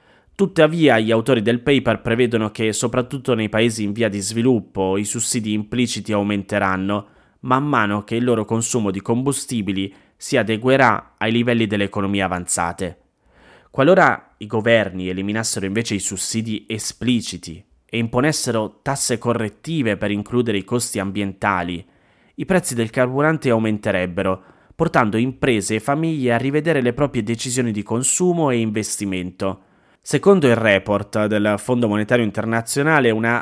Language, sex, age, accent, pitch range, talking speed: Italian, male, 20-39, native, 105-125 Hz, 135 wpm